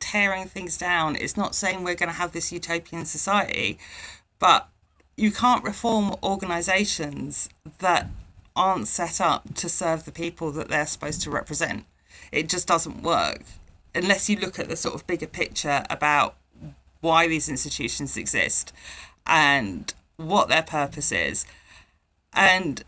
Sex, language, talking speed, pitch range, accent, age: female, English, 145 wpm, 145-200 Hz, British, 40-59